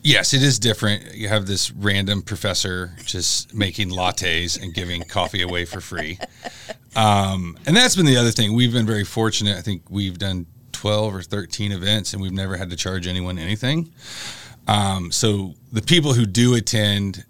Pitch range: 95-120 Hz